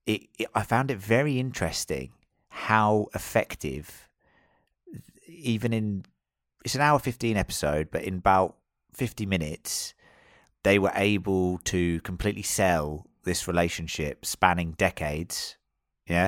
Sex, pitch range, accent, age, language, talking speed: male, 80-105 Hz, British, 30-49, English, 110 wpm